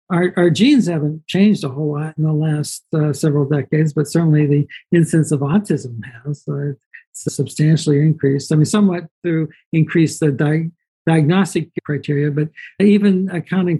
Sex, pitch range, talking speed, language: male, 145-165 Hz, 155 wpm, English